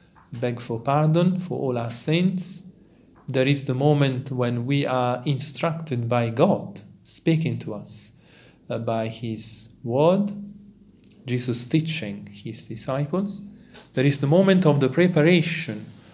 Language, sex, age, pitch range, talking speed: English, male, 40-59, 115-160 Hz, 130 wpm